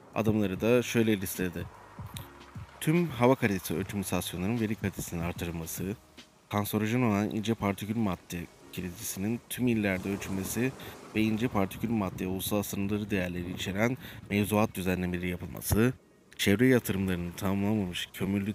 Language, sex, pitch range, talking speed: Turkish, male, 95-110 Hz, 115 wpm